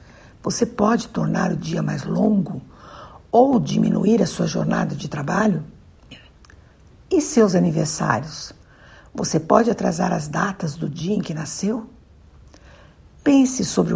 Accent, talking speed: Brazilian, 125 wpm